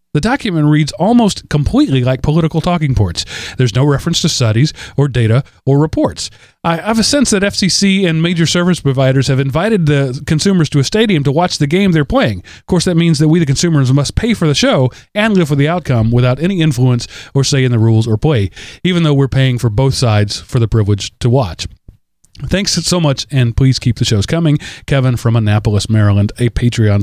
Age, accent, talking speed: 40-59, American, 215 wpm